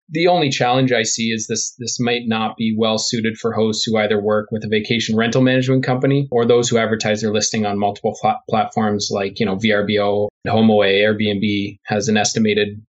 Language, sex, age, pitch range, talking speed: English, male, 20-39, 105-115 Hz, 195 wpm